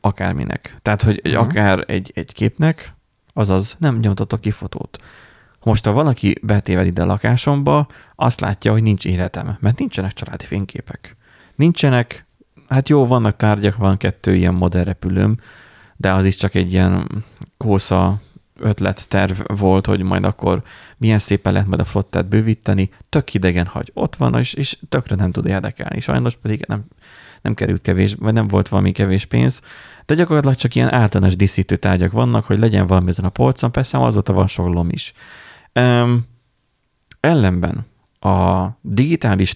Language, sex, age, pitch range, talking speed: Hungarian, male, 30-49, 95-115 Hz, 155 wpm